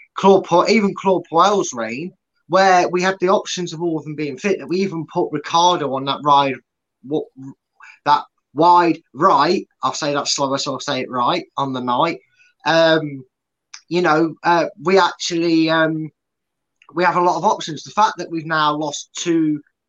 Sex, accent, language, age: male, British, English, 20-39